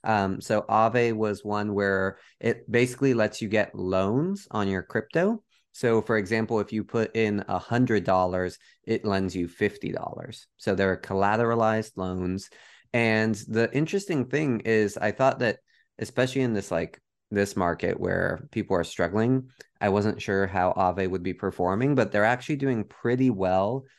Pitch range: 95-120 Hz